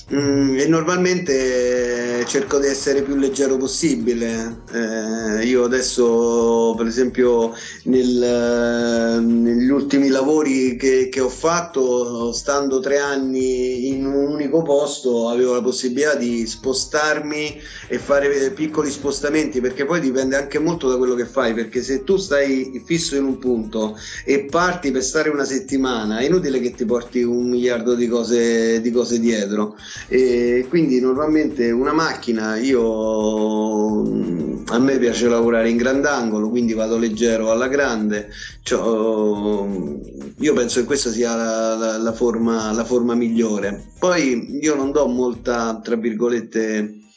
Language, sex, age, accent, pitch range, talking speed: Italian, male, 30-49, native, 115-135 Hz, 140 wpm